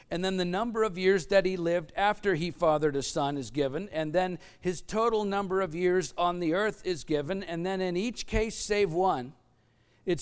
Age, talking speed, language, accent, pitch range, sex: 50-69, 210 wpm, English, American, 155-190 Hz, male